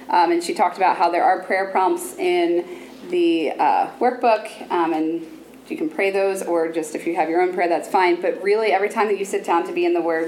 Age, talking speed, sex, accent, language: 20-39, 250 wpm, female, American, English